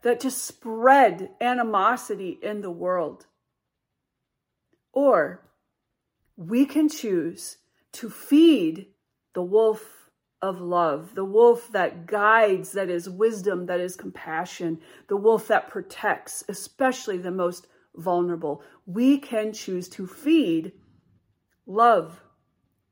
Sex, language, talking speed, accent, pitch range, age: female, English, 105 wpm, American, 190-265 Hz, 40-59